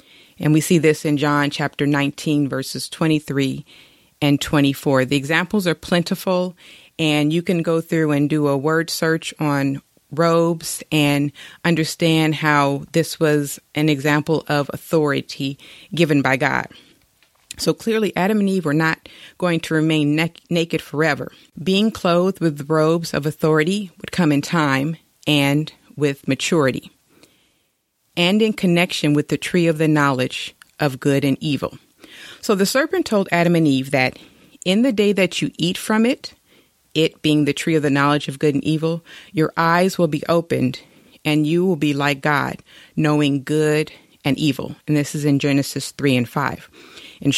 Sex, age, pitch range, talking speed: female, 30-49, 145-170 Hz, 165 wpm